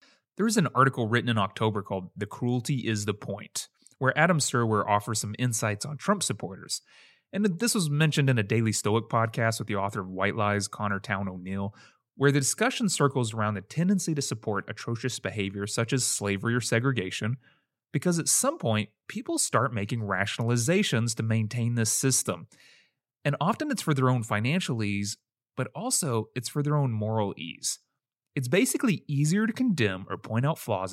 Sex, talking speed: male, 180 wpm